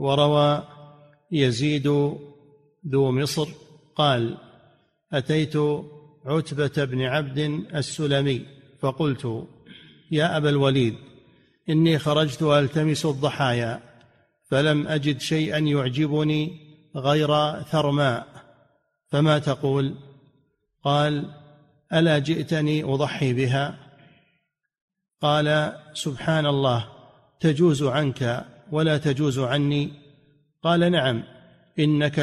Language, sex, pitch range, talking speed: Arabic, male, 140-155 Hz, 80 wpm